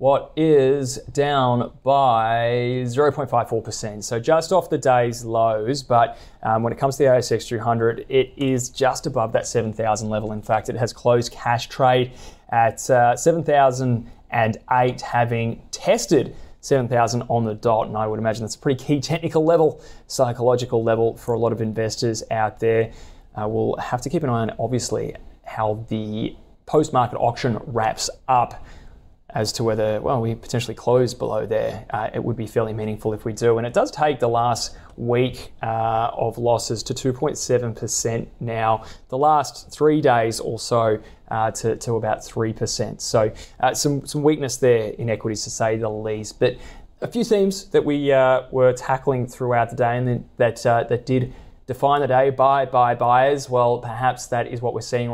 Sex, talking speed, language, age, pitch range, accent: male, 175 wpm, English, 20-39, 115-130 Hz, Australian